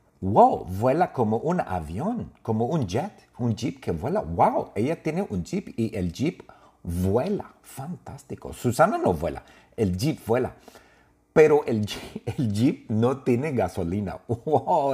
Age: 50-69